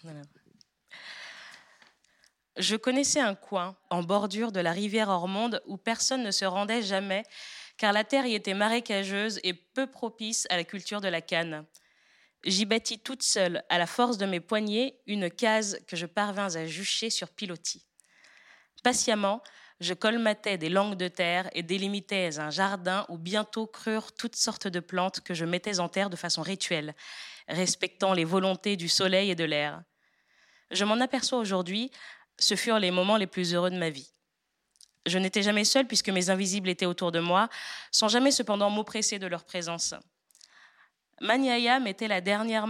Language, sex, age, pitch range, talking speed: French, female, 20-39, 180-220 Hz, 170 wpm